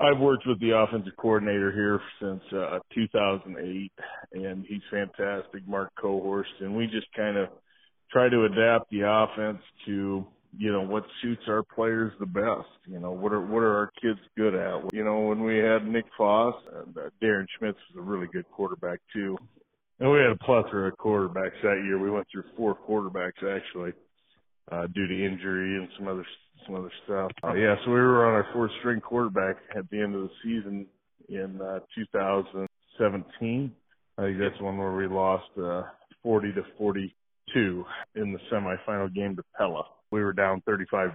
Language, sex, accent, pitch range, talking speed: English, male, American, 95-115 Hz, 185 wpm